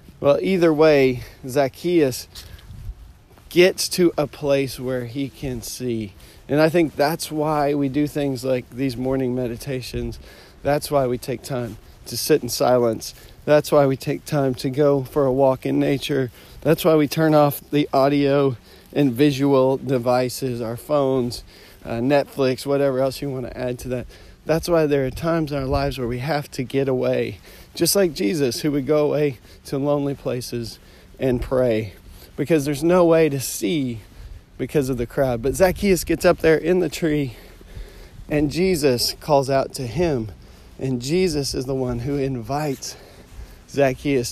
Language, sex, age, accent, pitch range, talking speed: English, male, 40-59, American, 125-150 Hz, 170 wpm